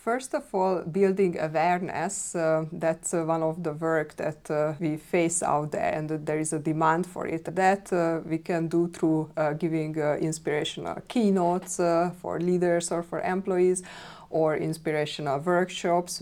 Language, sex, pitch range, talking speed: English, female, 155-180 Hz, 165 wpm